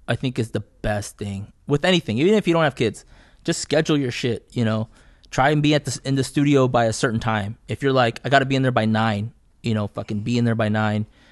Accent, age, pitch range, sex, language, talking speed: American, 20-39, 105-130 Hz, male, English, 270 wpm